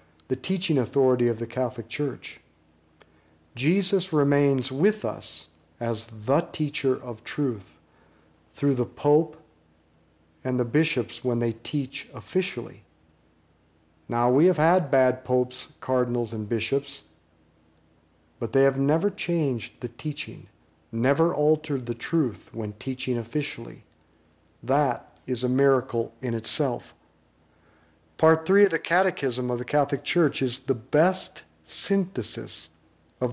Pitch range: 105-140 Hz